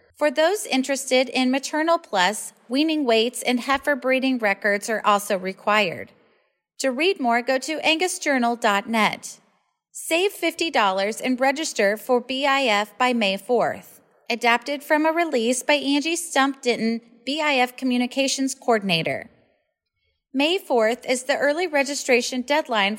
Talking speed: 125 wpm